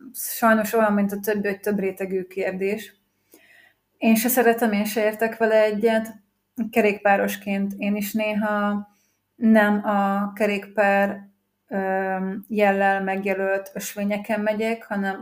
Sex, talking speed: female, 115 wpm